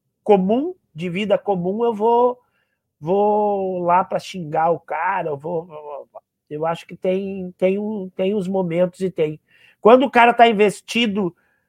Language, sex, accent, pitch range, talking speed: Portuguese, male, Brazilian, 160-215 Hz, 155 wpm